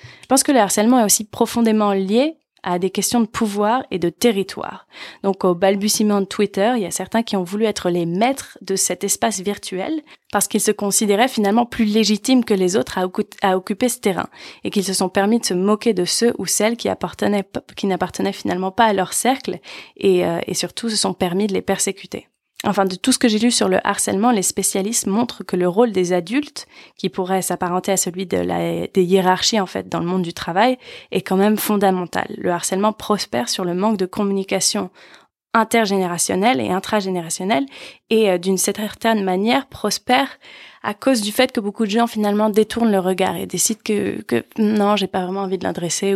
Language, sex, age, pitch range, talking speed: French, female, 20-39, 185-225 Hz, 210 wpm